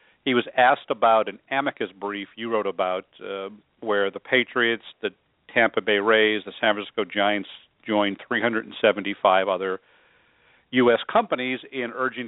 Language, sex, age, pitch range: English, male, 50-69, 105-125 Hz